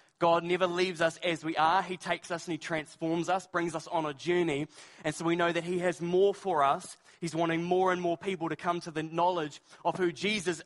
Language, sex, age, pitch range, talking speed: English, male, 20-39, 165-190 Hz, 240 wpm